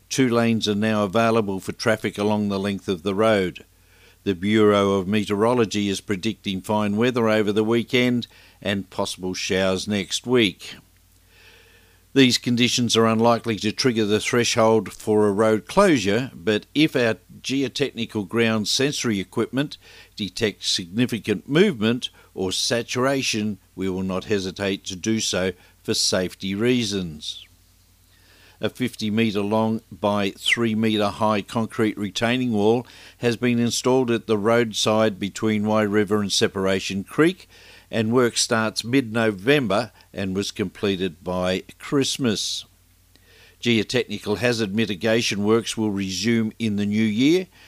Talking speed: 130 wpm